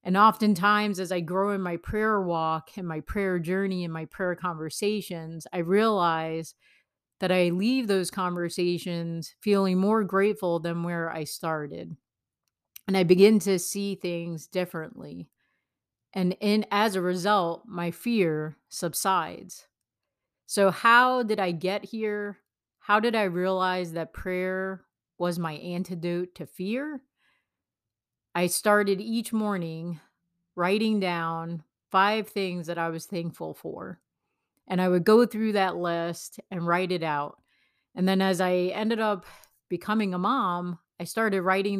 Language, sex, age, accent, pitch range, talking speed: English, female, 30-49, American, 170-205 Hz, 140 wpm